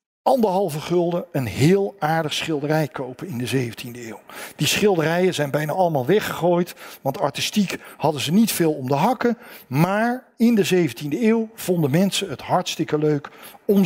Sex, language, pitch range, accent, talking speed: male, Dutch, 150-205 Hz, Dutch, 160 wpm